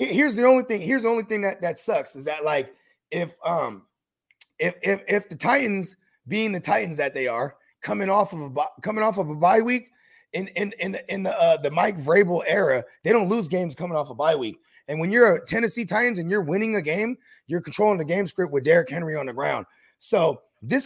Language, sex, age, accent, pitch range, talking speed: English, male, 30-49, American, 185-235 Hz, 235 wpm